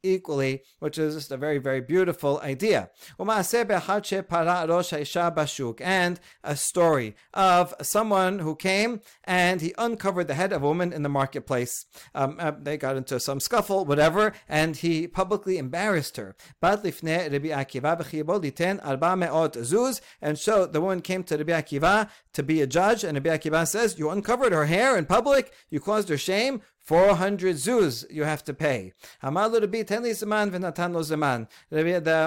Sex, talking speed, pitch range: male, 135 wpm, 150-195 Hz